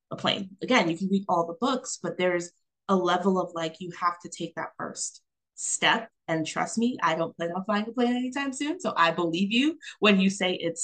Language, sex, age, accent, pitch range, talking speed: English, female, 20-39, American, 165-200 Hz, 235 wpm